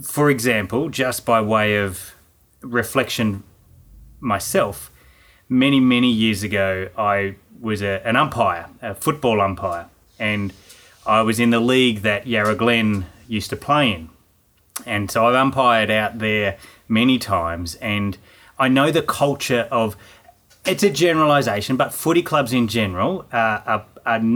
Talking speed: 145 wpm